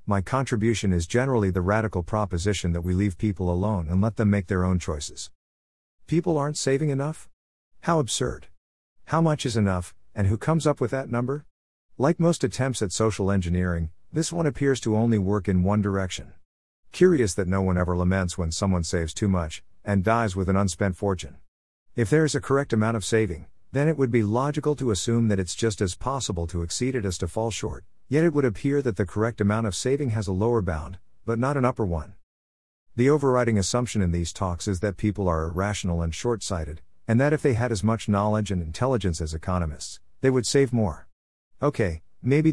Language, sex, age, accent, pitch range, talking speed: English, male, 50-69, American, 90-120 Hz, 205 wpm